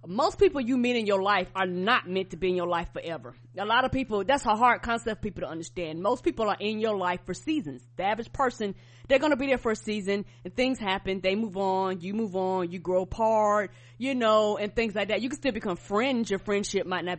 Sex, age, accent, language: female, 30-49, American, English